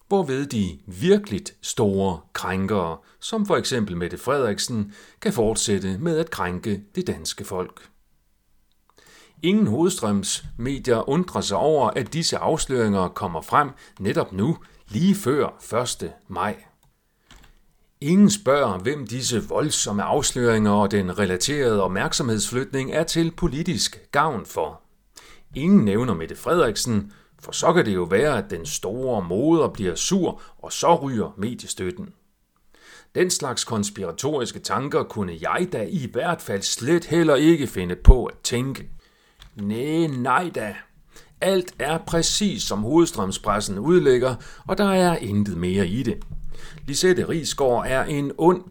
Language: Danish